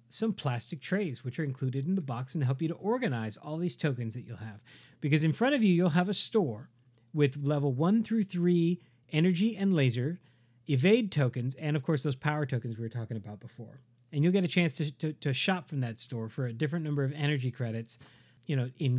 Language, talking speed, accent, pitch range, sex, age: English, 230 wpm, American, 125-165 Hz, male, 40-59